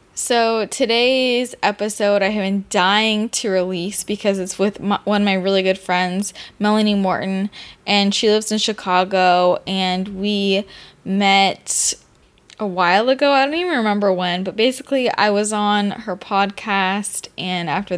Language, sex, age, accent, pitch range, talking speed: English, female, 10-29, American, 190-220 Hz, 150 wpm